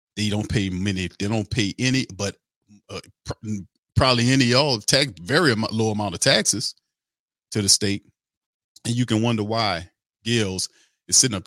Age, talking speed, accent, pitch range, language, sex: 40-59, 175 wpm, American, 95-120 Hz, English, male